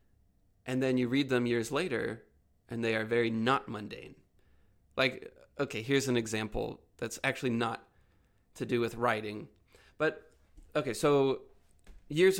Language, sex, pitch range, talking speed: English, male, 110-130 Hz, 140 wpm